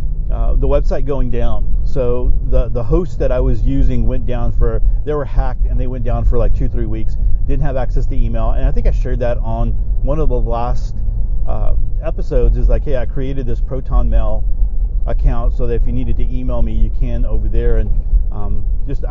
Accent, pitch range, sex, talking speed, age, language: American, 110-130 Hz, male, 220 wpm, 40-59, English